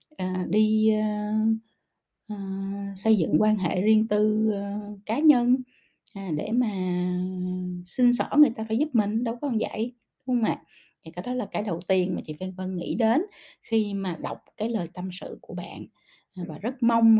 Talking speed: 190 wpm